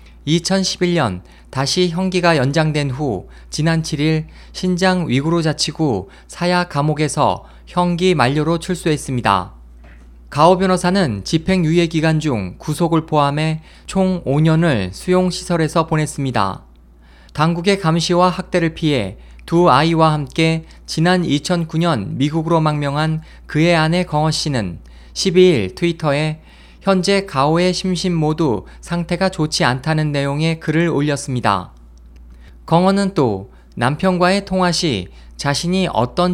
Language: Korean